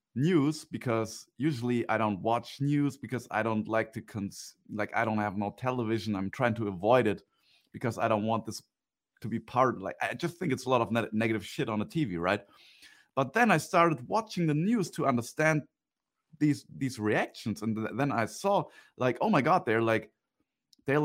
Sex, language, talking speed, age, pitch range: male, English, 195 wpm, 30-49, 110-155 Hz